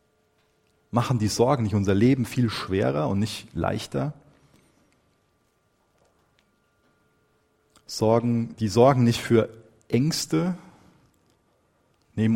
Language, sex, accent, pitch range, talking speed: German, male, German, 100-125 Hz, 85 wpm